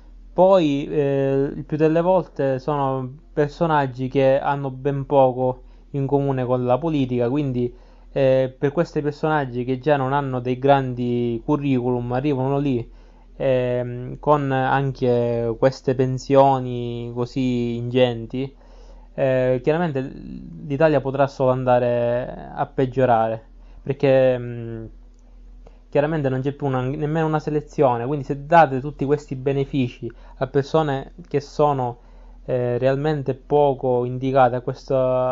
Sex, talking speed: male, 115 wpm